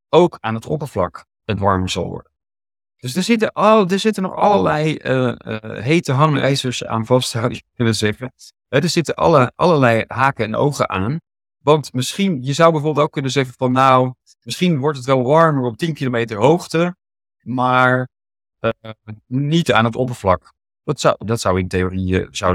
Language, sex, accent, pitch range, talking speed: Dutch, male, Dutch, 110-155 Hz, 175 wpm